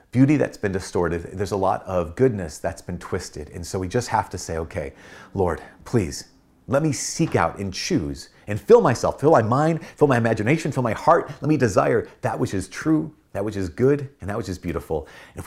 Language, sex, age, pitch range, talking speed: English, male, 30-49, 90-125 Hz, 220 wpm